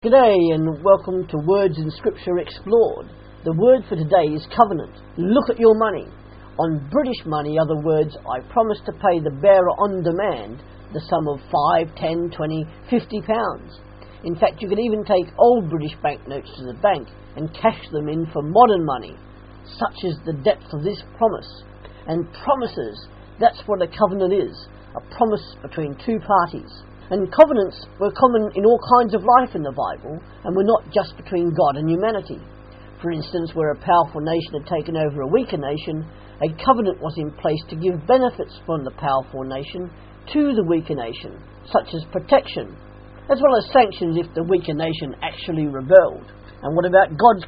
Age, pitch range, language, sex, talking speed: 50-69, 150-205 Hz, English, female, 180 wpm